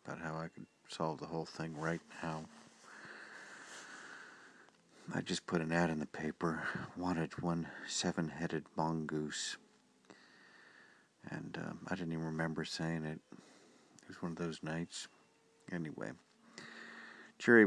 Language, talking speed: English, 130 wpm